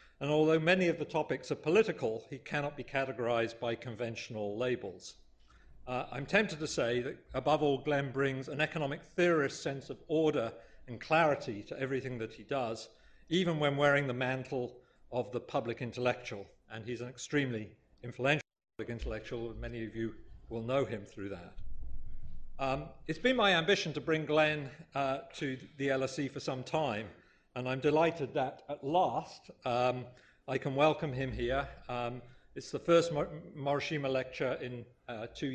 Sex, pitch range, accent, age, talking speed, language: male, 120-145 Hz, British, 50-69, 165 wpm, English